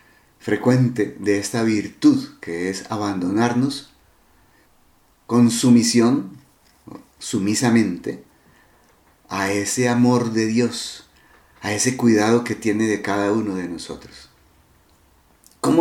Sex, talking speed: male, 100 wpm